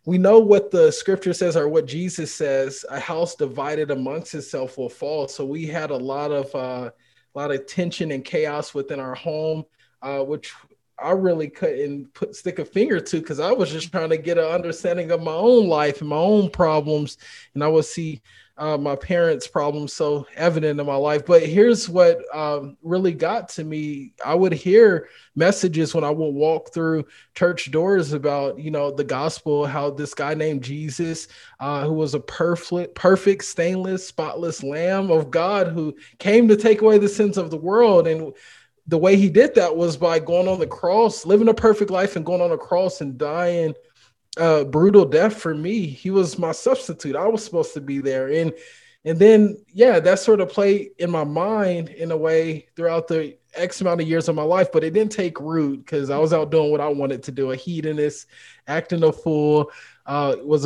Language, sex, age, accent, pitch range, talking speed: English, male, 20-39, American, 145-180 Hz, 205 wpm